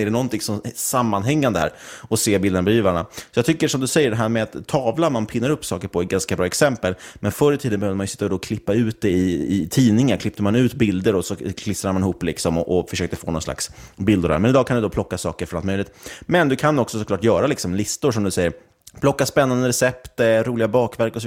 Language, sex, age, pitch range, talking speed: Swedish, male, 30-49, 100-120 Hz, 260 wpm